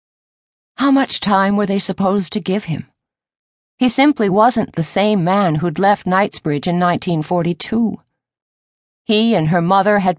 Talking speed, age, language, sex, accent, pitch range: 145 wpm, 50-69, English, female, American, 155-205 Hz